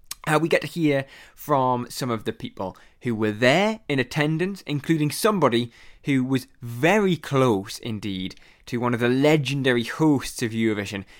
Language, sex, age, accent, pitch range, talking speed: English, male, 20-39, British, 120-165 Hz, 160 wpm